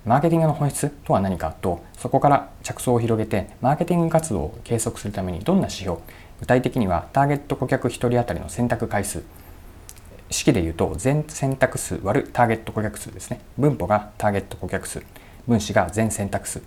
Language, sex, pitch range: Japanese, male, 90-120 Hz